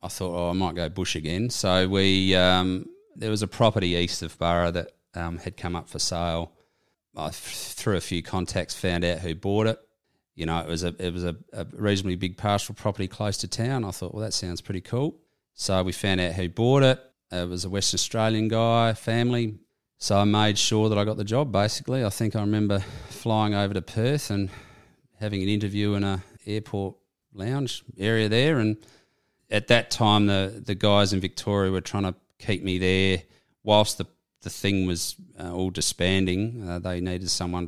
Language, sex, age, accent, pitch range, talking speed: English, male, 30-49, Australian, 90-105 Hz, 205 wpm